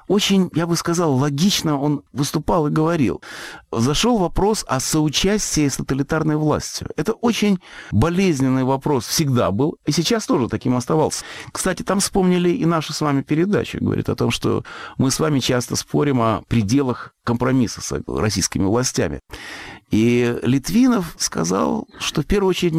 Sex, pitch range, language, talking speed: male, 105-155 Hz, Russian, 150 wpm